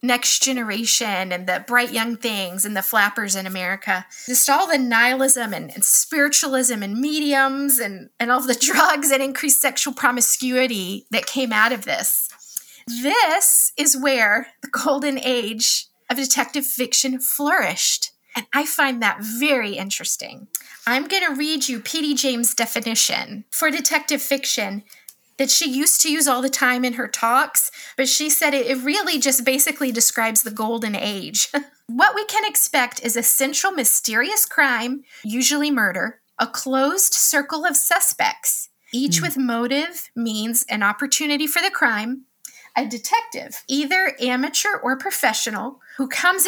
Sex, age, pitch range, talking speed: female, 20-39, 235-290 Hz, 150 wpm